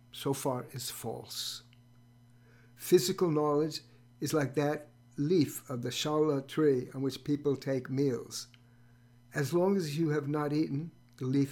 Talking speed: 145 wpm